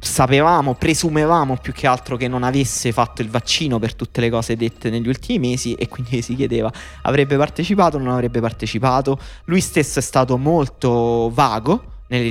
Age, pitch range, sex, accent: 20-39, 110-130 Hz, male, native